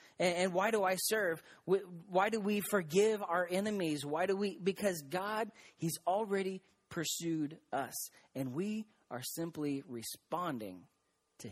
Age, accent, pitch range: 30-49, American, 130-165 Hz